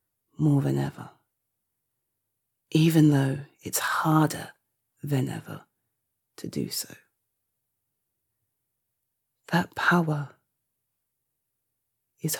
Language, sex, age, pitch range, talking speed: English, female, 30-49, 120-180 Hz, 75 wpm